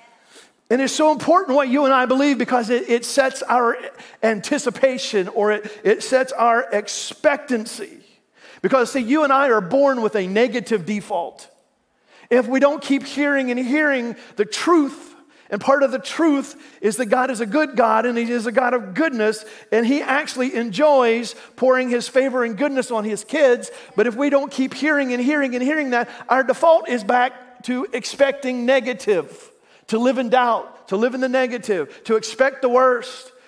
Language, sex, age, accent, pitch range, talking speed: English, male, 40-59, American, 215-275 Hz, 185 wpm